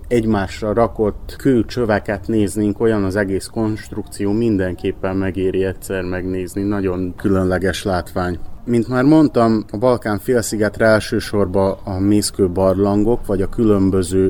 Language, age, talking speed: Hungarian, 30-49, 115 wpm